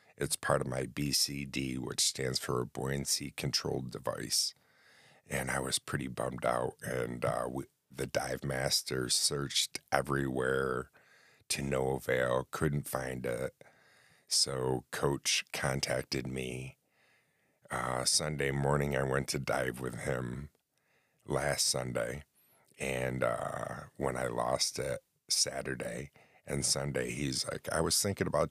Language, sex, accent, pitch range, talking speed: English, male, American, 65-70 Hz, 130 wpm